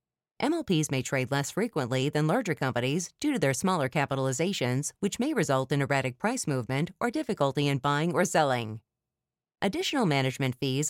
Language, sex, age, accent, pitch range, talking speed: English, female, 30-49, American, 135-180 Hz, 160 wpm